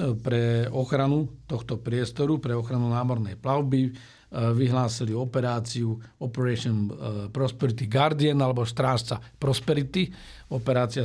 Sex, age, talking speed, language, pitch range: male, 50-69, 90 wpm, Slovak, 120-135 Hz